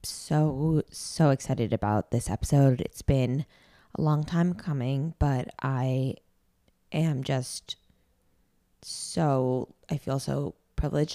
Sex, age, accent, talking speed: female, 20-39, American, 115 wpm